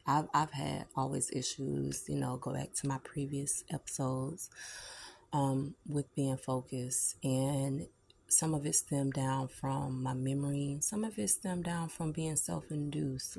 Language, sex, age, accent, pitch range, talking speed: English, female, 20-39, American, 130-145 Hz, 155 wpm